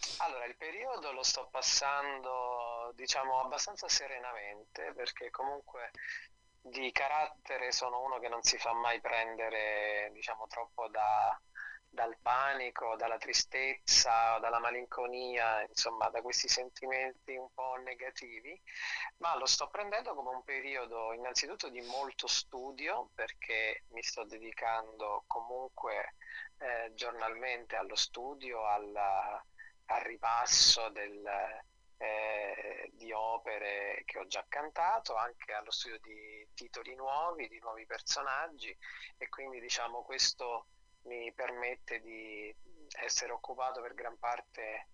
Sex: male